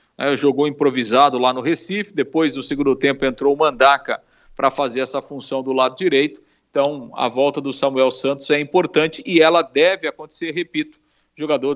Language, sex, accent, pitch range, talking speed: Portuguese, male, Brazilian, 135-160 Hz, 175 wpm